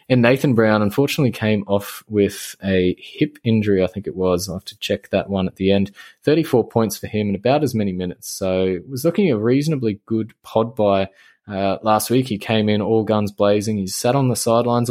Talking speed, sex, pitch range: 215 wpm, male, 100-125 Hz